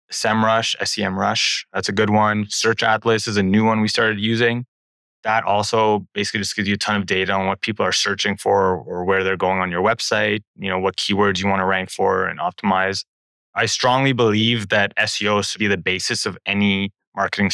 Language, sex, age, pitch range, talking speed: English, male, 20-39, 95-115 Hz, 210 wpm